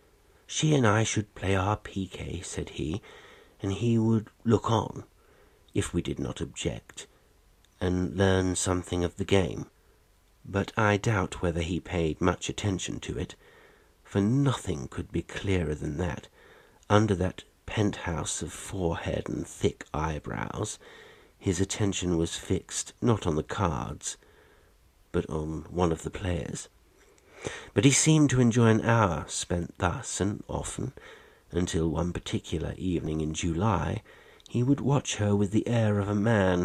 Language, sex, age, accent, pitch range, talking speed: English, male, 60-79, British, 85-110 Hz, 150 wpm